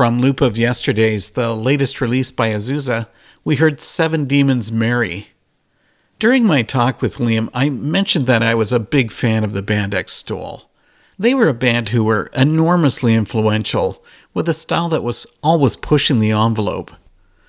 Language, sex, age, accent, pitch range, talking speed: English, male, 50-69, American, 115-145 Hz, 165 wpm